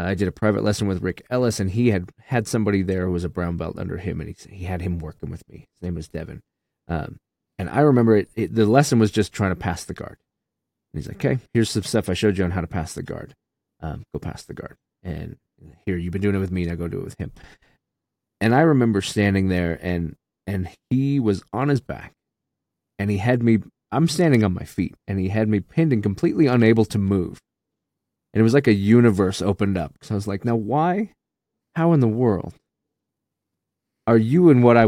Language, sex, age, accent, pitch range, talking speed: English, male, 30-49, American, 90-115 Hz, 235 wpm